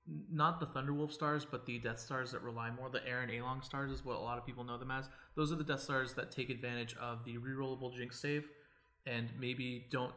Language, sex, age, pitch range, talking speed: English, male, 20-39, 120-140 Hz, 255 wpm